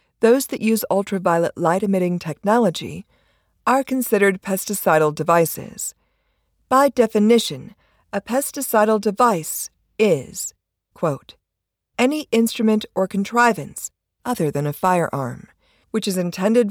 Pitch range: 170-230 Hz